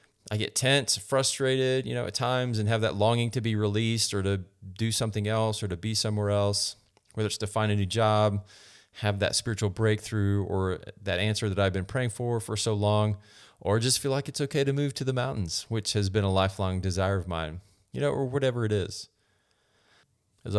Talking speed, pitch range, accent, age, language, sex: 215 wpm, 100-115 Hz, American, 30-49, English, male